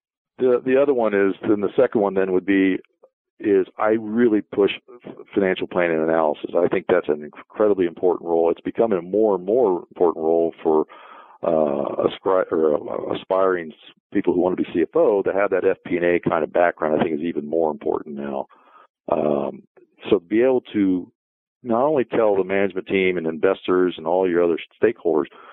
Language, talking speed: English, 185 wpm